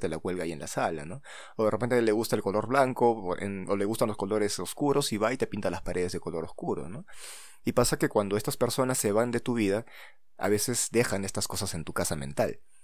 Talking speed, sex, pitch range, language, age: 255 wpm, male, 95-120 Hz, Spanish, 20-39